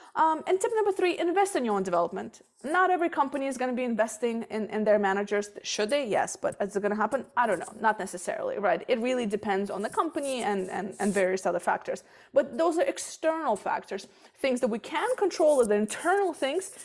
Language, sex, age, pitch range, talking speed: English, female, 20-39, 195-275 Hz, 220 wpm